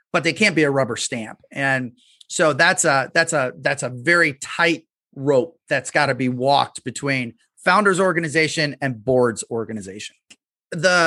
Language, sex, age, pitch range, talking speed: English, male, 30-49, 135-170 Hz, 165 wpm